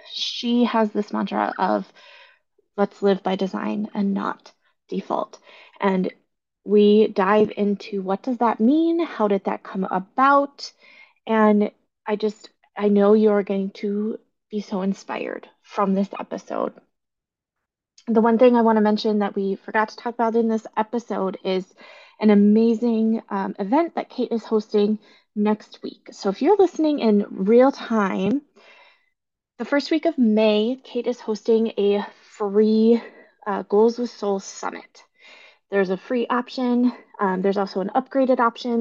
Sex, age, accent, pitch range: female, 20-39, American, 200-240 Hz